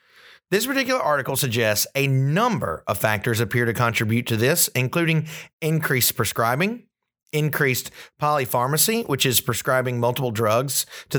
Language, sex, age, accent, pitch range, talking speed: English, male, 30-49, American, 115-155 Hz, 130 wpm